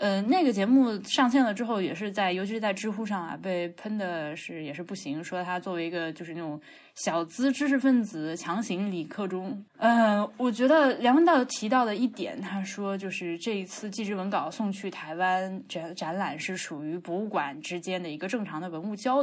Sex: female